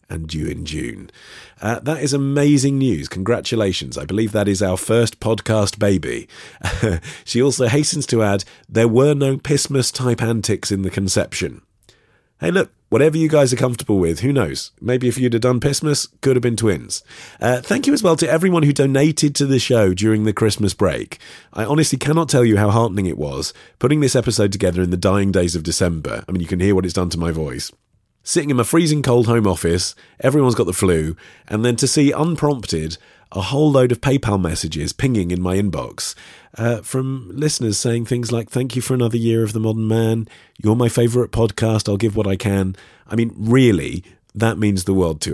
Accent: British